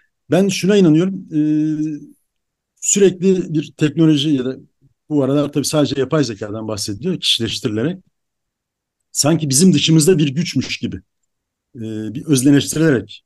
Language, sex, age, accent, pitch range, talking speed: Turkish, male, 60-79, native, 135-170 Hz, 110 wpm